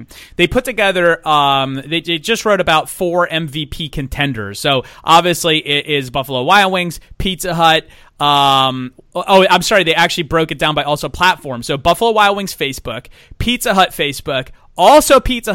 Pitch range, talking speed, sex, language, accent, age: 145-195 Hz, 165 wpm, male, English, American, 30-49